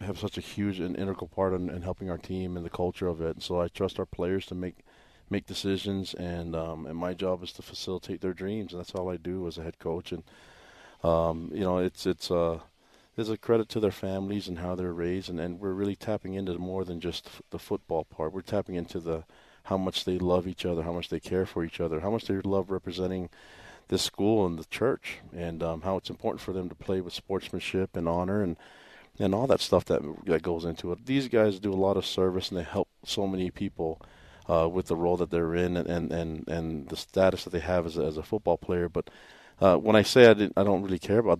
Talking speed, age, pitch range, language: 250 wpm, 40-59, 85-100 Hz, English